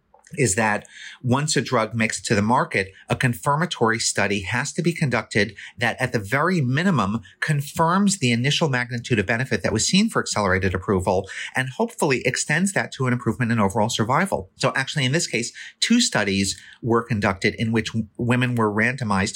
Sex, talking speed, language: male, 175 wpm, English